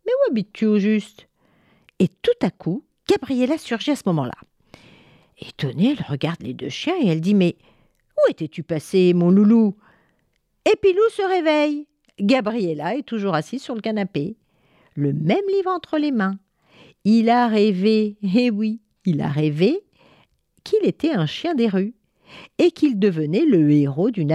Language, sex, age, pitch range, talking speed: French, female, 50-69, 155-240 Hz, 175 wpm